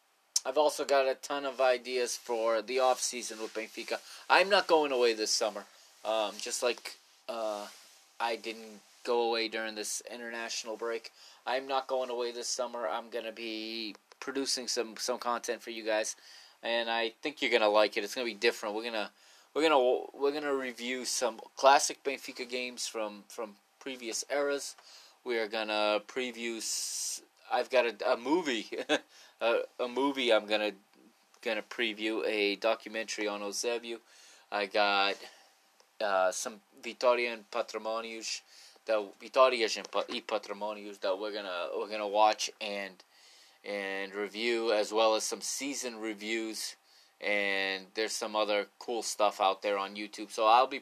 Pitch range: 105-125 Hz